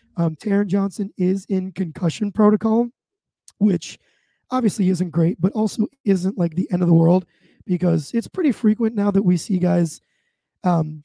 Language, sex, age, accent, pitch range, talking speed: English, male, 20-39, American, 170-205 Hz, 165 wpm